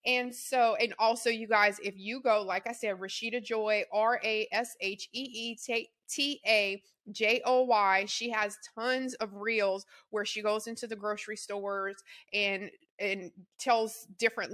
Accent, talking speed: American, 170 wpm